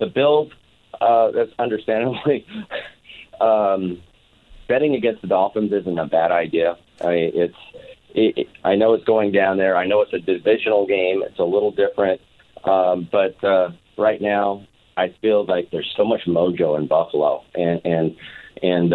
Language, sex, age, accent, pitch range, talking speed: English, male, 40-59, American, 90-110 Hz, 160 wpm